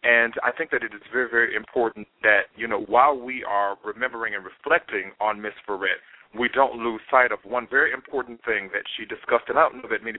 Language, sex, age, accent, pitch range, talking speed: English, male, 40-59, American, 110-130 Hz, 230 wpm